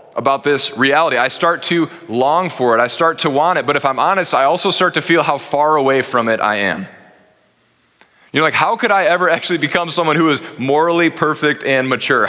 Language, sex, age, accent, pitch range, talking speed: English, male, 20-39, American, 115-155 Hz, 220 wpm